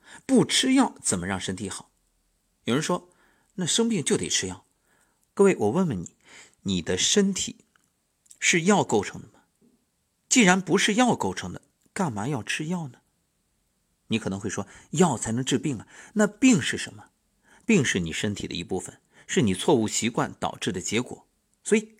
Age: 50-69